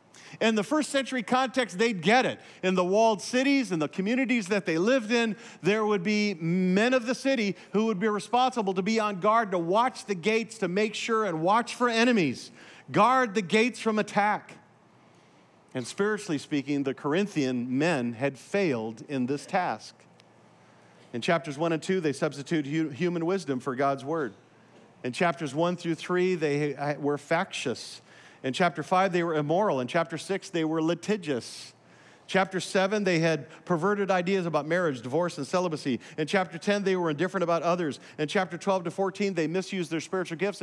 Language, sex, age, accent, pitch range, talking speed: English, male, 50-69, American, 165-220 Hz, 180 wpm